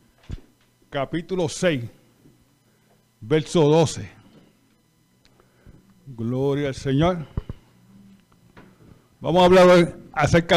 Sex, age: male, 50-69